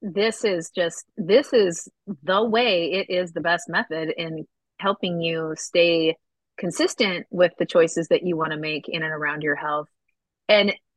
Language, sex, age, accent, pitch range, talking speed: English, female, 30-49, American, 175-220 Hz, 170 wpm